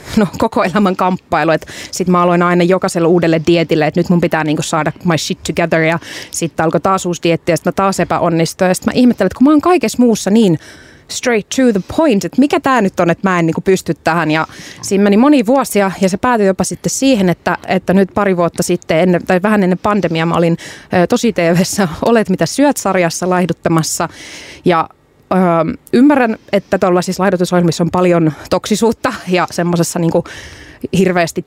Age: 20-39